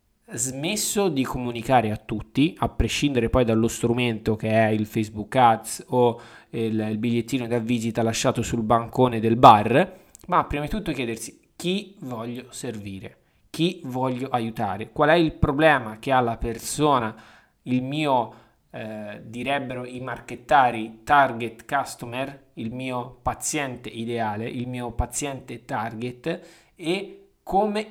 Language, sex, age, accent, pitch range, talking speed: Italian, male, 20-39, native, 115-145 Hz, 135 wpm